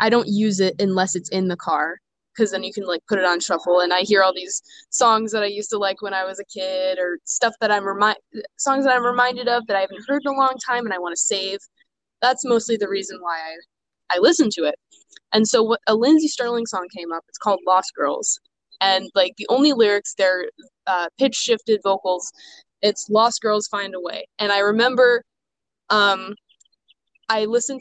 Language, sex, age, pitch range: English, female, 20-39, 185-225 Hz